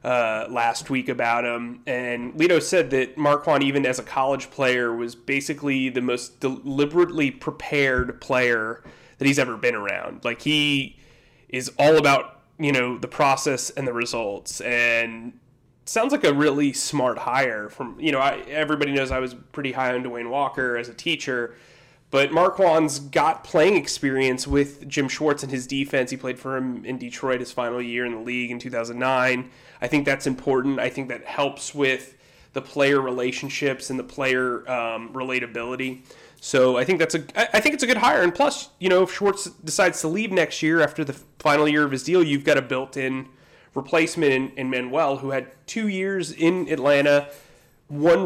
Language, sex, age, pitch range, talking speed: English, male, 30-49, 125-150 Hz, 180 wpm